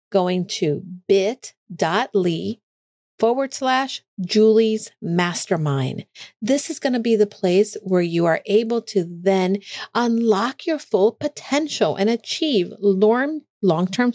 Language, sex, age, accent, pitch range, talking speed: English, female, 50-69, American, 185-235 Hz, 115 wpm